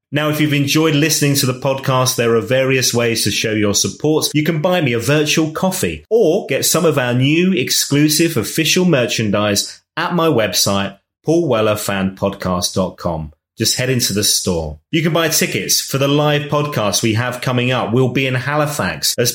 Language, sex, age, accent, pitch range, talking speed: English, male, 30-49, British, 105-150 Hz, 180 wpm